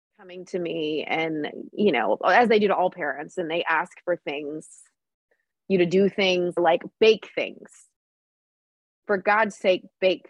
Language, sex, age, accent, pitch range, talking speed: English, female, 20-39, American, 175-215 Hz, 165 wpm